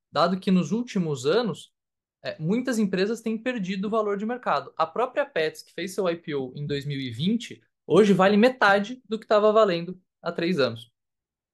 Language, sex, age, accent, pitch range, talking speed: Portuguese, male, 20-39, Brazilian, 160-220 Hz, 165 wpm